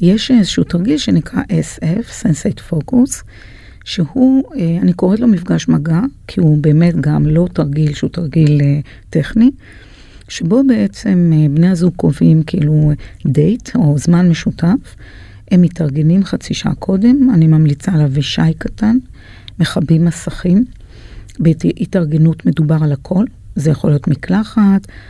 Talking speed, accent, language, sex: 125 wpm, native, Hebrew, female